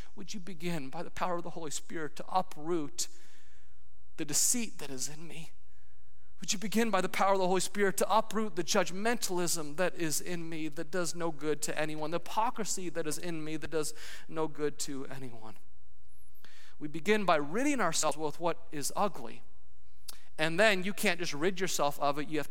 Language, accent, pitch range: English, American, 130-170 Hz